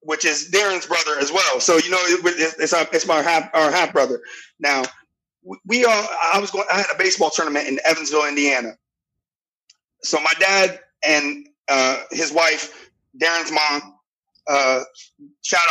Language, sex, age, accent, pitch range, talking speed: English, male, 30-49, American, 155-205 Hz, 160 wpm